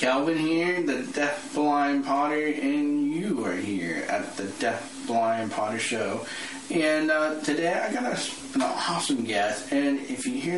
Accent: American